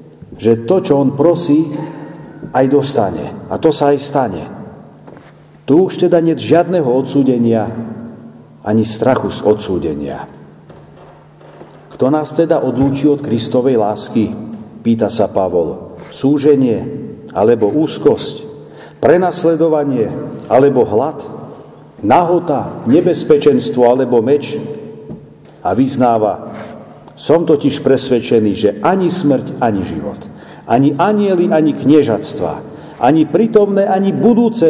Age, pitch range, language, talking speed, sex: 50-69, 130-170 Hz, Slovak, 105 wpm, male